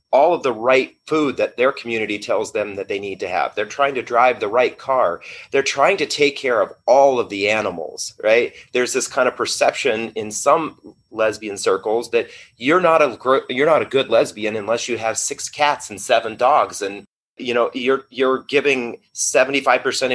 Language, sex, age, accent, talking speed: English, male, 30-49, American, 195 wpm